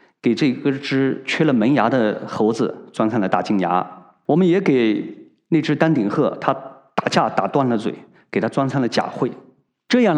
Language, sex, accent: Chinese, male, native